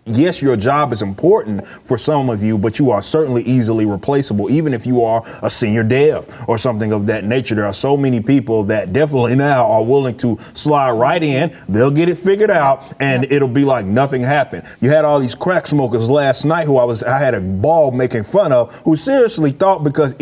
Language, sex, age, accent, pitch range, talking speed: English, male, 30-49, American, 130-200 Hz, 215 wpm